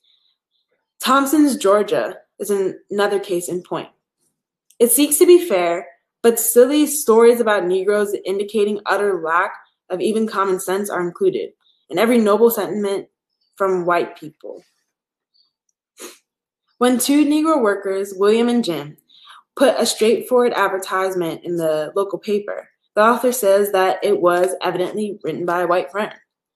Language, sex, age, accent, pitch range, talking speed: English, female, 20-39, American, 185-235 Hz, 135 wpm